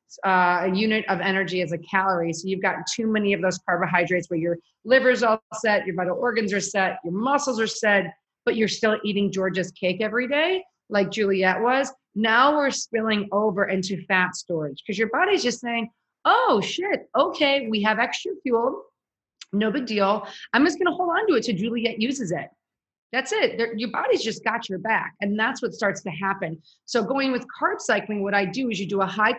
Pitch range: 190-230 Hz